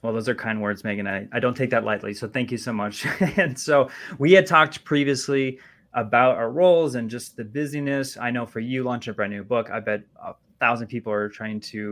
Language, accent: English, American